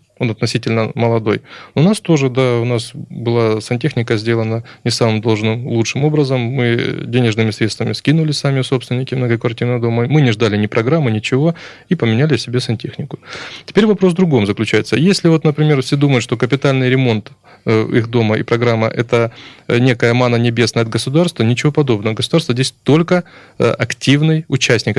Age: 20-39